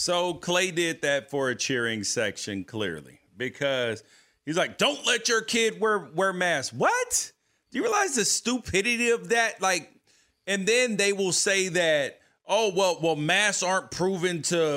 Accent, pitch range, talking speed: American, 180-235 Hz, 165 wpm